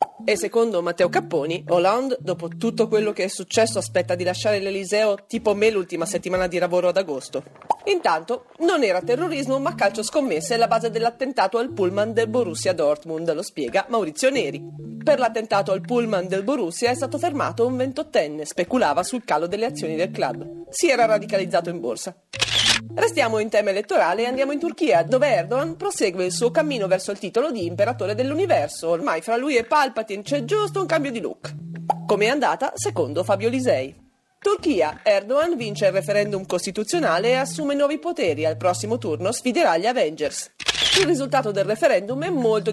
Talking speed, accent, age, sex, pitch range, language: 175 wpm, native, 40-59, female, 185-275 Hz, Italian